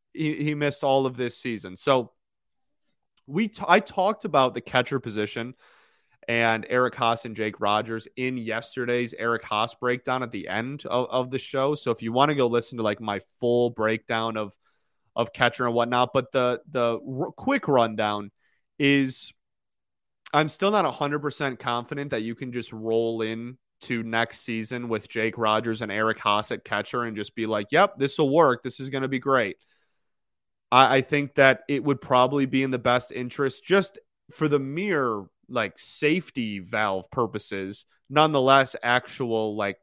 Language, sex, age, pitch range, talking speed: English, male, 30-49, 115-140 Hz, 175 wpm